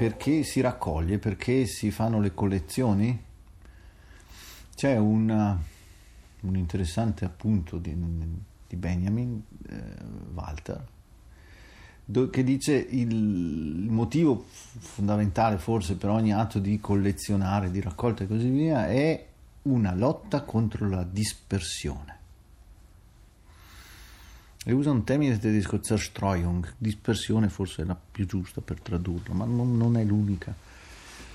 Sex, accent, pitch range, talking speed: male, native, 90-115 Hz, 115 wpm